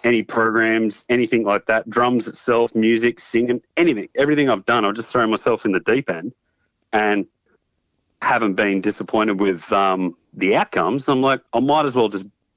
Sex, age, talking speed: male, 30-49, 175 wpm